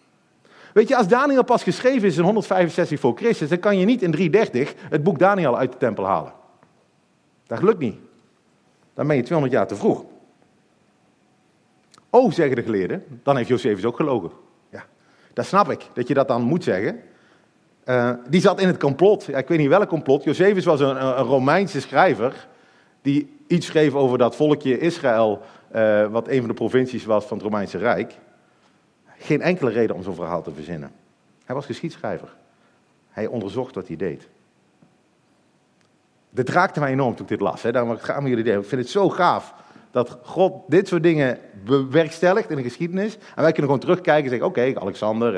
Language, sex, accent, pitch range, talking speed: Dutch, male, Dutch, 125-190 Hz, 190 wpm